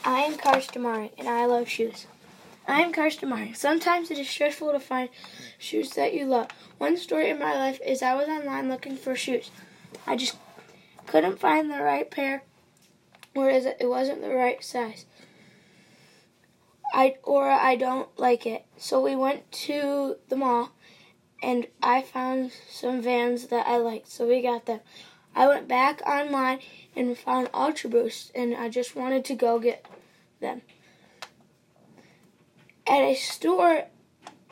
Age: 10-29